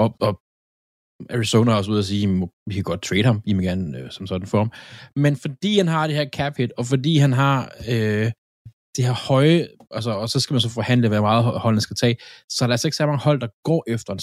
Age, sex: 20-39, male